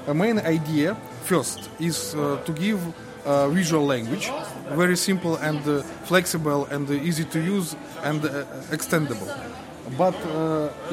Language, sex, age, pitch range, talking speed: English, male, 20-39, 150-185 Hz, 145 wpm